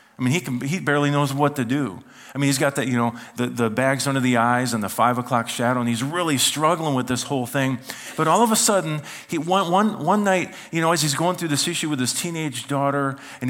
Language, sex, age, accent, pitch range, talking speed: English, male, 40-59, American, 130-175 Hz, 260 wpm